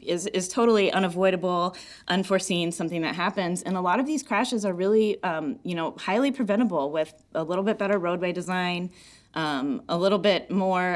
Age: 20-39